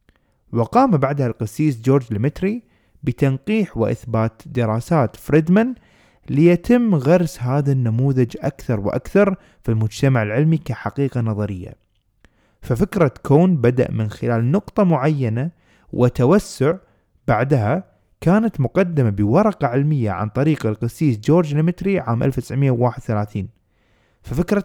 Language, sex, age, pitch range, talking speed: Arabic, male, 20-39, 115-170 Hz, 100 wpm